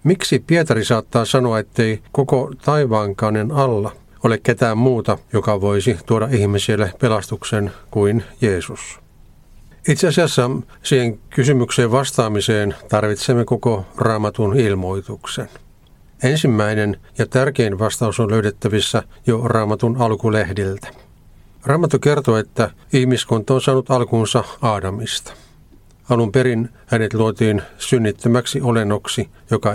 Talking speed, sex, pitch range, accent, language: 105 wpm, male, 105-125 Hz, native, Finnish